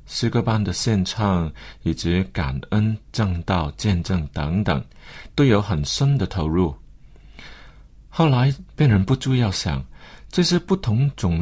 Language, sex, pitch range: Chinese, male, 90-125 Hz